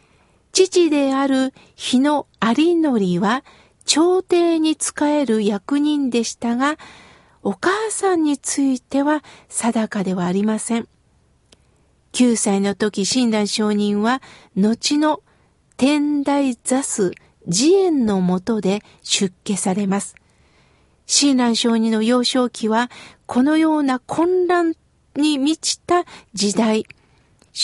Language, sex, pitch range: Japanese, female, 220-300 Hz